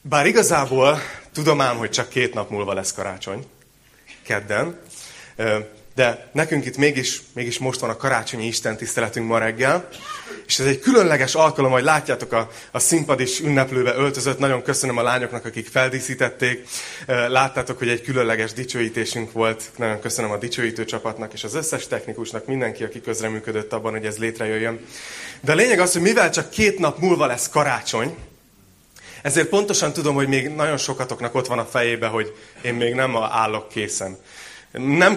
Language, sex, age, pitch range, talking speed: Hungarian, male, 30-49, 120-150 Hz, 160 wpm